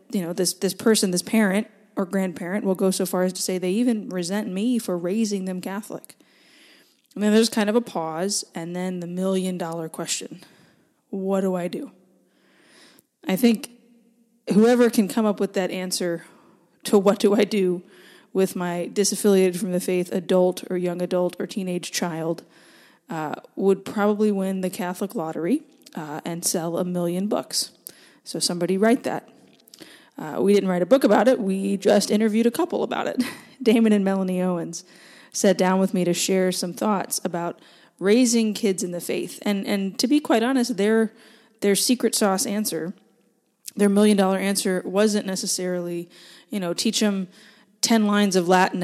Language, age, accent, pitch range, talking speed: English, 20-39, American, 180-220 Hz, 175 wpm